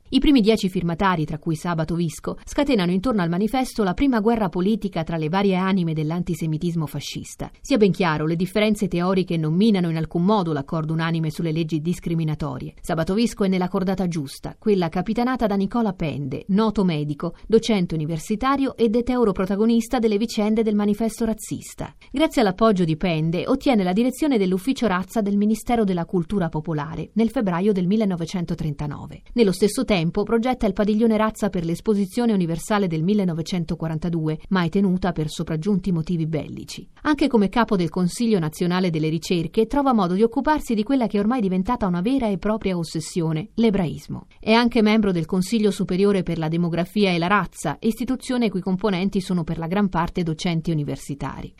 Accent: native